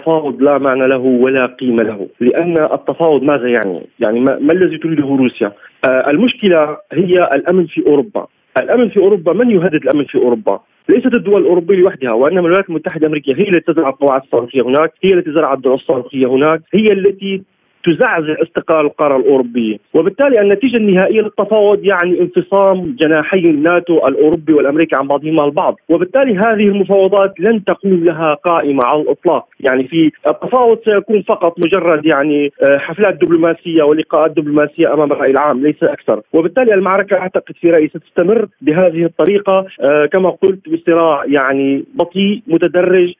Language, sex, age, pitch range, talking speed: Arabic, male, 40-59, 145-190 Hz, 150 wpm